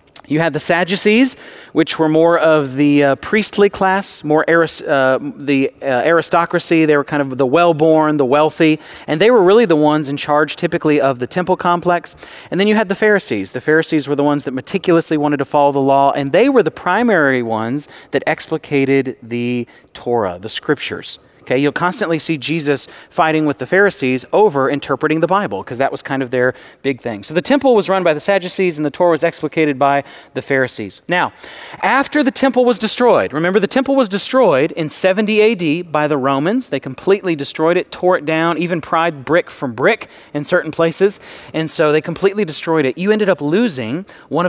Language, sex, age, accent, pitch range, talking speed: English, male, 40-59, American, 140-185 Hz, 200 wpm